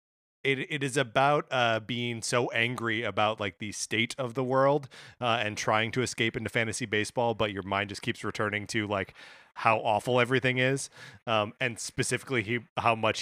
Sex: male